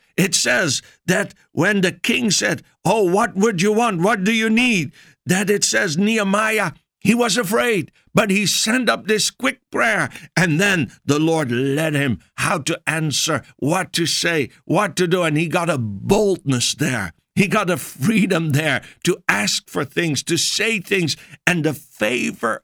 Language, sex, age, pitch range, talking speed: English, male, 60-79, 135-185 Hz, 175 wpm